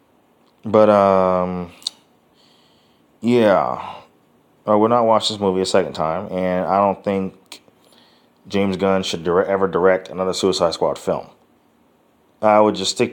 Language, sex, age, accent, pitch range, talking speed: English, male, 20-39, American, 90-105 Hz, 135 wpm